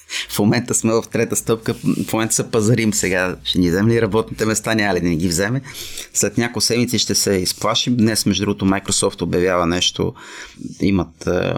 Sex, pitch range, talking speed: male, 90-110 Hz, 185 wpm